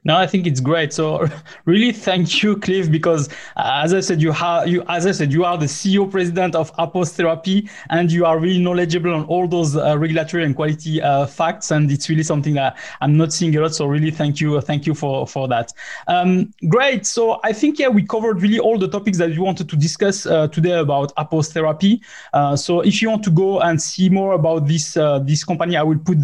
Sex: male